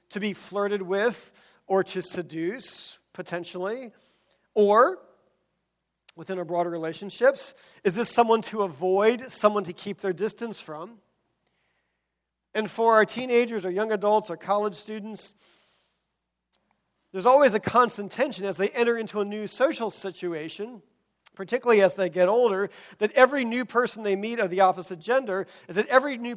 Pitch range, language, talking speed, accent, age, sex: 185-235 Hz, English, 150 wpm, American, 40-59, male